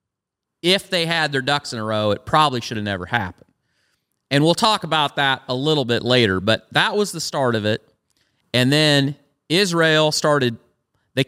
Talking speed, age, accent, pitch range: 180 wpm, 40-59, American, 120-155 Hz